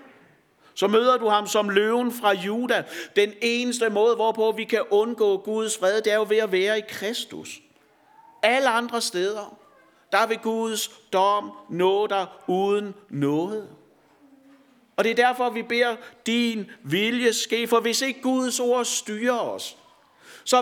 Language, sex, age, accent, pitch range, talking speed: Danish, male, 60-79, native, 210-245 Hz, 150 wpm